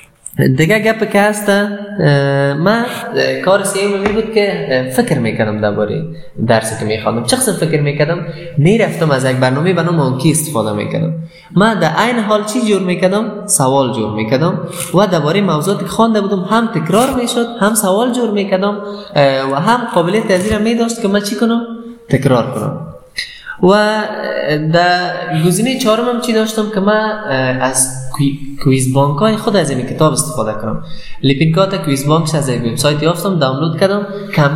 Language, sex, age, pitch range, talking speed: Persian, male, 20-39, 140-210 Hz, 150 wpm